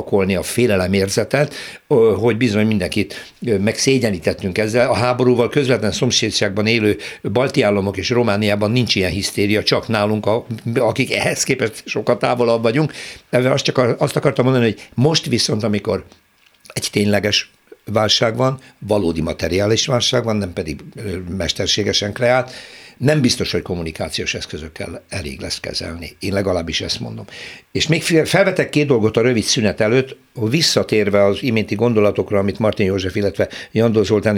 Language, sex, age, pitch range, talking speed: Hungarian, male, 60-79, 100-125 Hz, 140 wpm